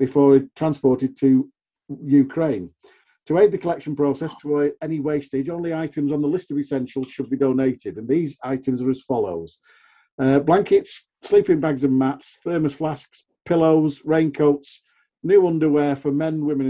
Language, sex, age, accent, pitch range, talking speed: English, male, 50-69, British, 140-160 Hz, 160 wpm